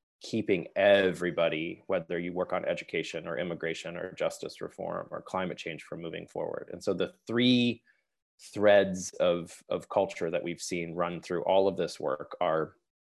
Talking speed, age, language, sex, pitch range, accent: 165 wpm, 20-39, English, male, 90-120 Hz, American